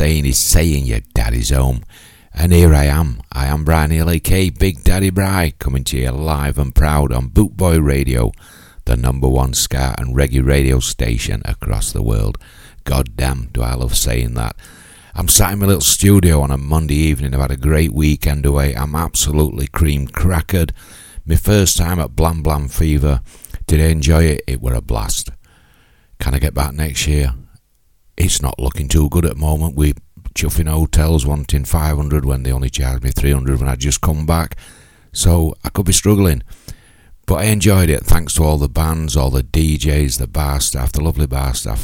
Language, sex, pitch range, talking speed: English, male, 65-80 Hz, 190 wpm